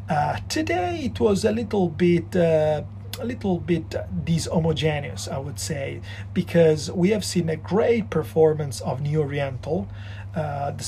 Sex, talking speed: male, 150 wpm